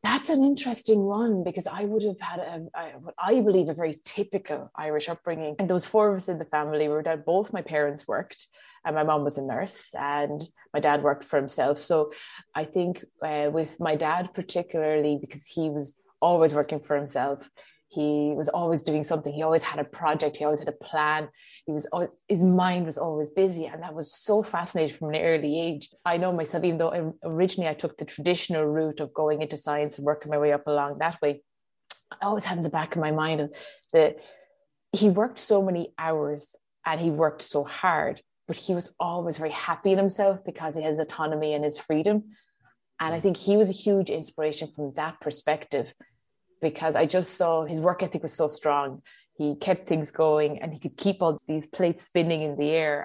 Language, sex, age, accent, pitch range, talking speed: English, female, 20-39, Irish, 150-180 Hz, 210 wpm